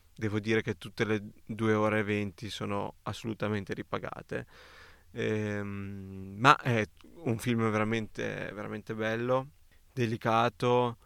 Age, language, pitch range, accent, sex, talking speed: 20-39, Italian, 100-120 Hz, native, male, 115 wpm